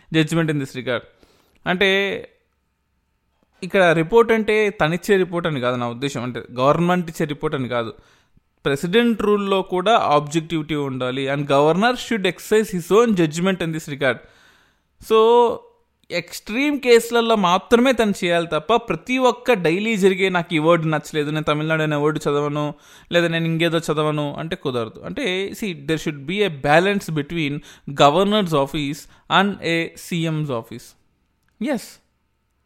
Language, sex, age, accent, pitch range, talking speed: Telugu, male, 20-39, native, 145-190 Hz, 140 wpm